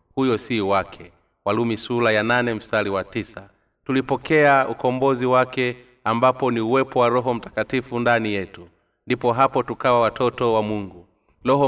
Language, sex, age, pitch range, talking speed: Swahili, male, 30-49, 105-125 Hz, 145 wpm